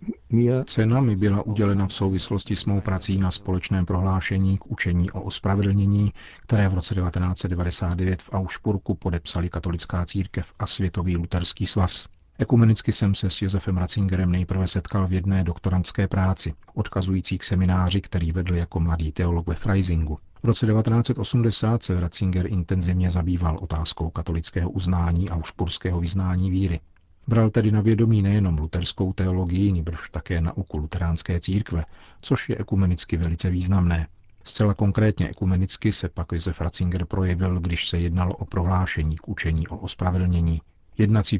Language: Czech